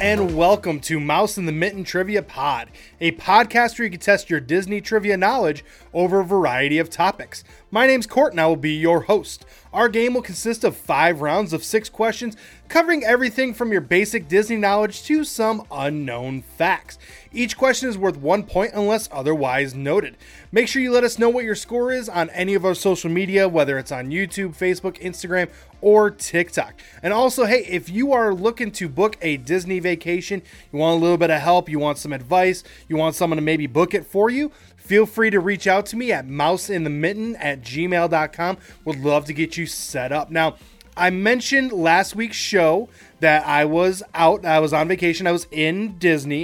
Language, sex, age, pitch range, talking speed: English, male, 20-39, 160-215 Hz, 200 wpm